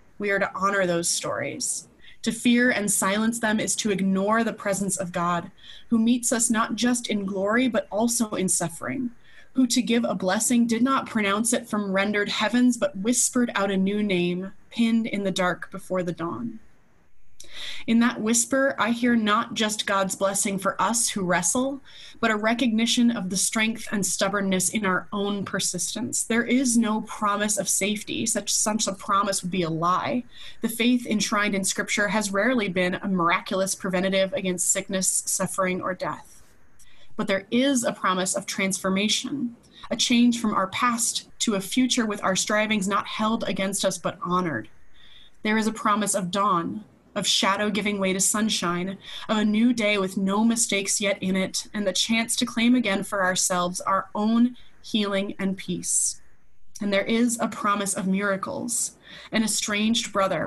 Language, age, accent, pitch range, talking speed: English, 20-39, American, 195-230 Hz, 175 wpm